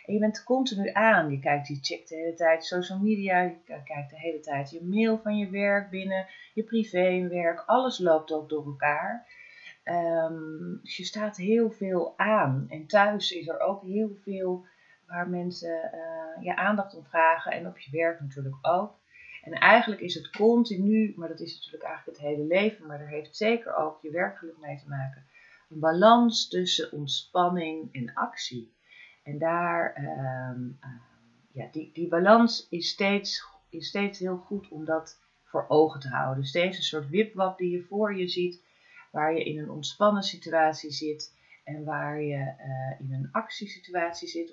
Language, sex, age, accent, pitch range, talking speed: Dutch, female, 30-49, Dutch, 150-200 Hz, 175 wpm